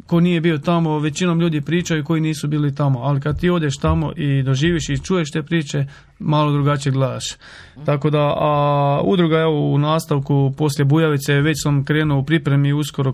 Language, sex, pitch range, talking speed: Croatian, male, 140-155 Hz, 185 wpm